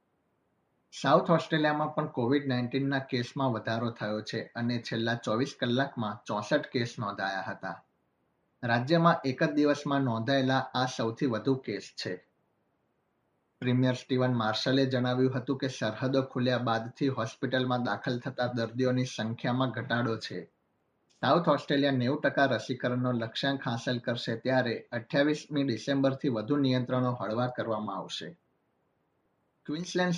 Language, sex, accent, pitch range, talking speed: Gujarati, male, native, 120-135 Hz, 115 wpm